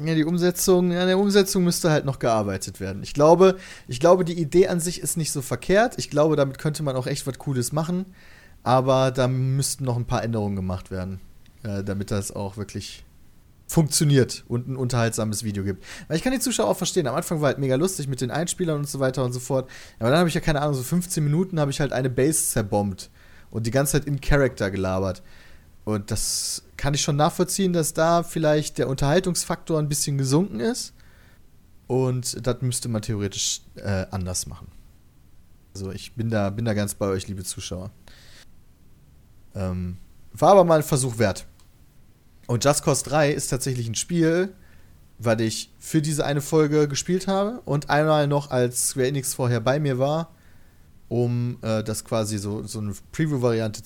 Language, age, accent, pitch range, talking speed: German, 30-49, German, 100-155 Hz, 195 wpm